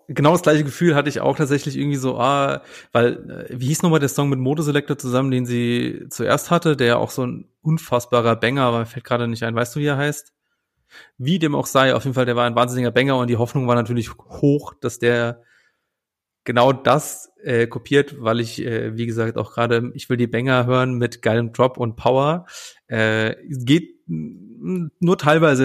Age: 30-49